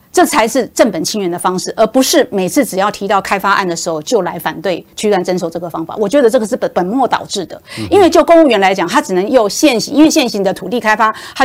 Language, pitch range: Chinese, 195-290 Hz